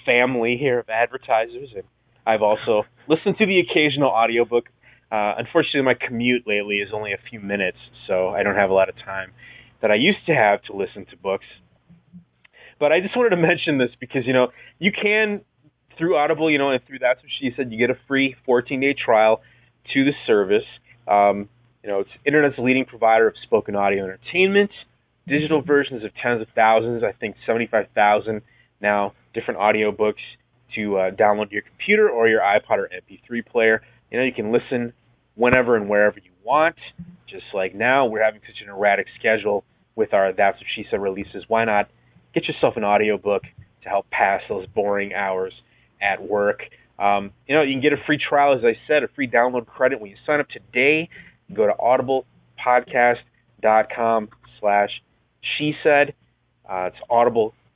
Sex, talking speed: male, 185 wpm